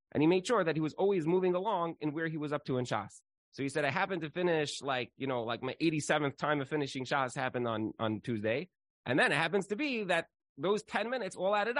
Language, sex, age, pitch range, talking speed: English, male, 30-49, 125-175 Hz, 260 wpm